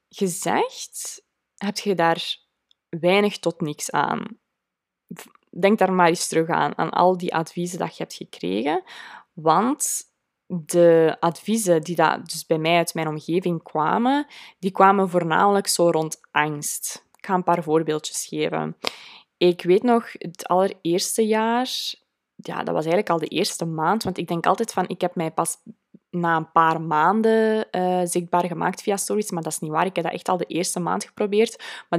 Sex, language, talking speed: female, Dutch, 175 wpm